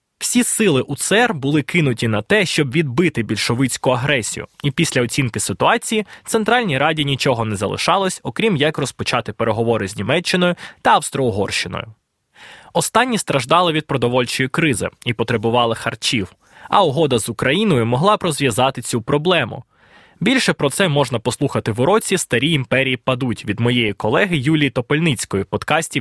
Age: 20-39